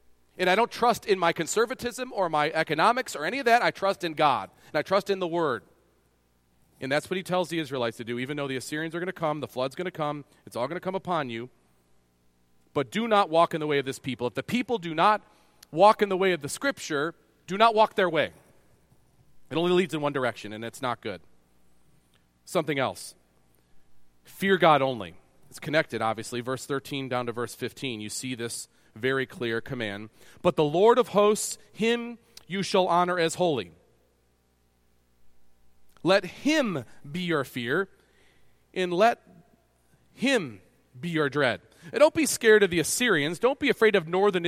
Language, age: English, 40-59